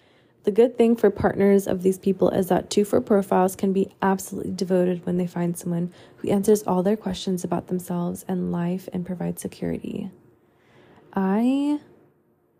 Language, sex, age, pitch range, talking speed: English, female, 20-39, 175-195 Hz, 160 wpm